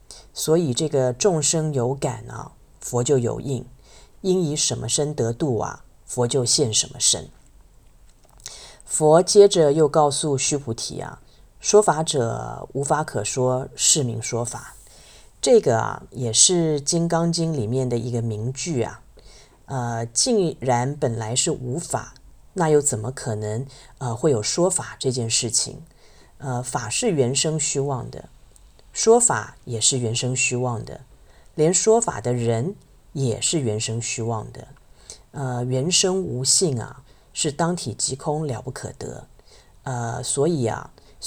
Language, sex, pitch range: Chinese, female, 120-155 Hz